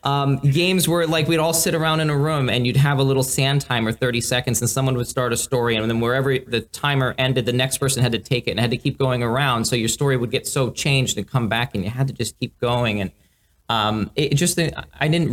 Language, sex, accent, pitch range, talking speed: English, male, American, 105-130 Hz, 265 wpm